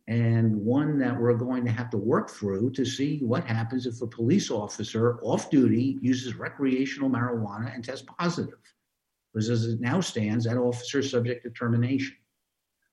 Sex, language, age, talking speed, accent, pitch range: male, English, 50-69, 165 wpm, American, 115-135 Hz